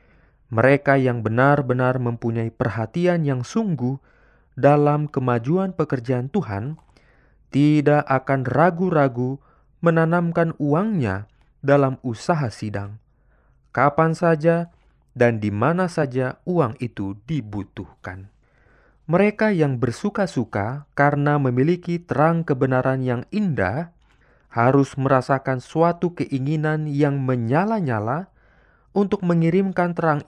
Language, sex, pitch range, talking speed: Indonesian, male, 125-165 Hz, 90 wpm